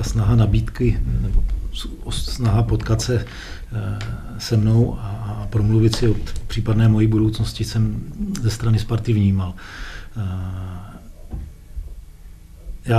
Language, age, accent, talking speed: Czech, 40-59, native, 95 wpm